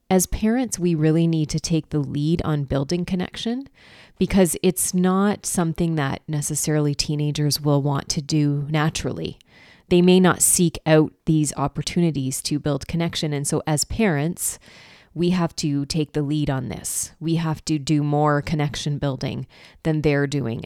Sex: female